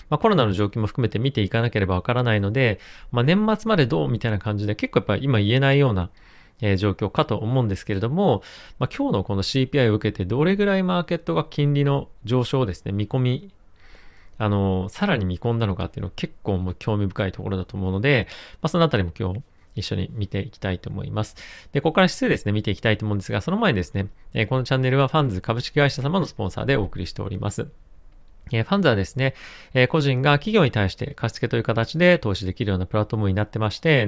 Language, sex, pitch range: Japanese, male, 100-135 Hz